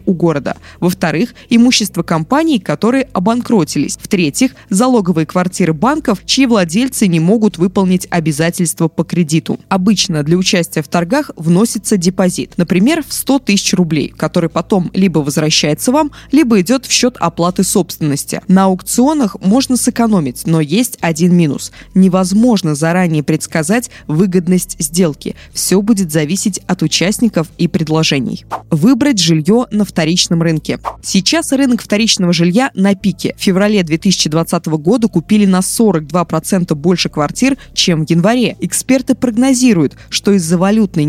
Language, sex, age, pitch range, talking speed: Russian, female, 20-39, 165-220 Hz, 130 wpm